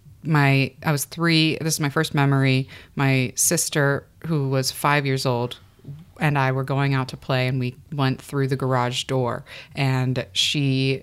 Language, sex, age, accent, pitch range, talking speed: English, female, 30-49, American, 130-165 Hz, 175 wpm